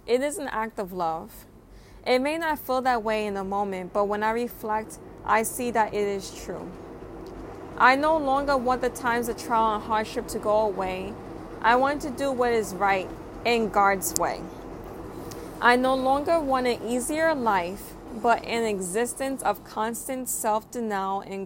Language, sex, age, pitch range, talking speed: English, female, 20-39, 195-245 Hz, 175 wpm